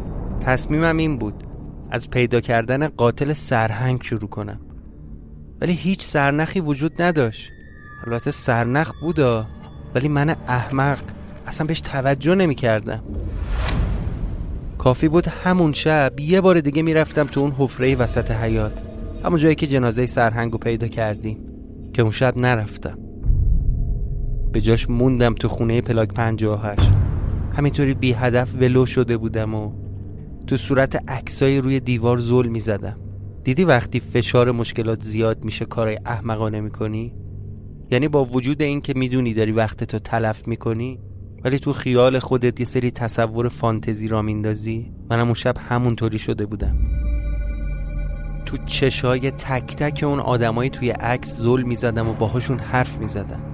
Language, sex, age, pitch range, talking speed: Persian, male, 30-49, 110-135 Hz, 140 wpm